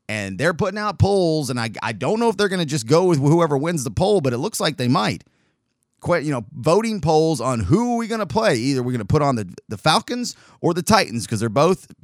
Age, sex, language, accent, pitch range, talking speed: 30-49, male, English, American, 120-175 Hz, 255 wpm